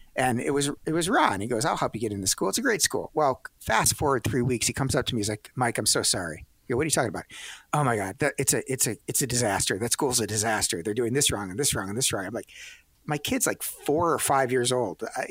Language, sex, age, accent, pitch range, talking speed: English, male, 50-69, American, 110-140 Hz, 300 wpm